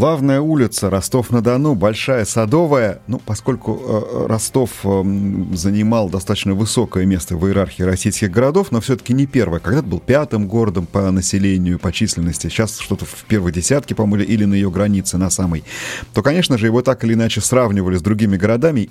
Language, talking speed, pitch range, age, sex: Russian, 170 wpm, 95-120 Hz, 30-49, male